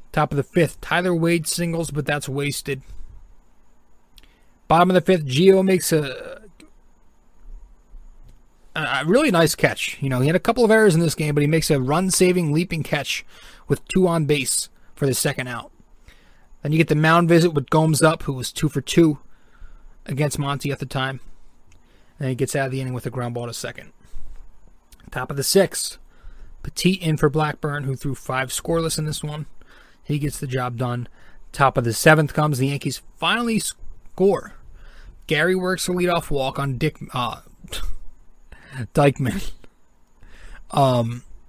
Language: English